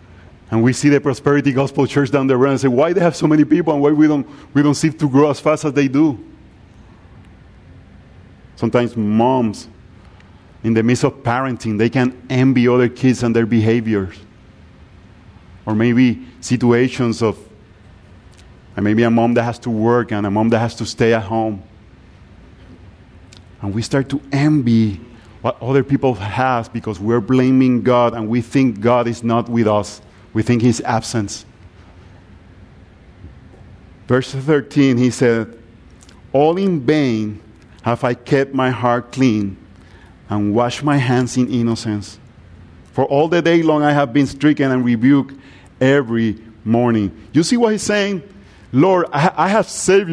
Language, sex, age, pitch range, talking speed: English, male, 40-59, 105-140 Hz, 160 wpm